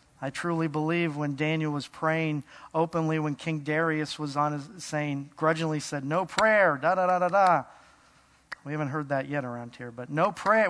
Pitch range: 145-175 Hz